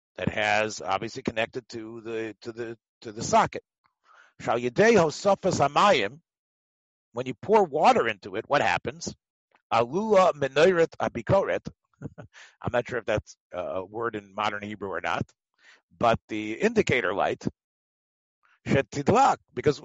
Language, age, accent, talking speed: English, 50-69, American, 110 wpm